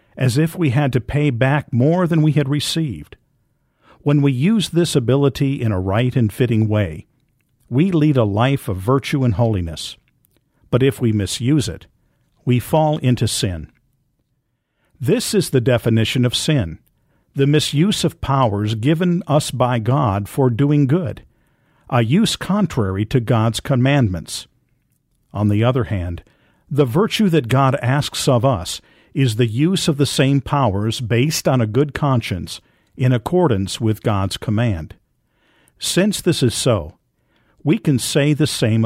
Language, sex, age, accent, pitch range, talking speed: English, male, 50-69, American, 115-145 Hz, 155 wpm